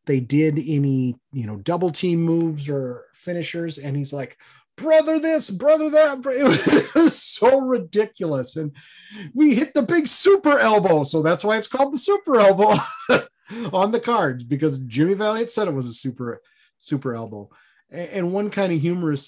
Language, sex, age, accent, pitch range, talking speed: English, male, 30-49, American, 130-200 Hz, 170 wpm